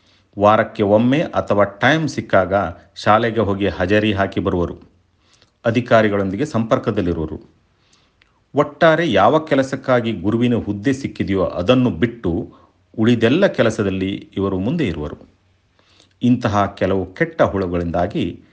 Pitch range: 90-115 Hz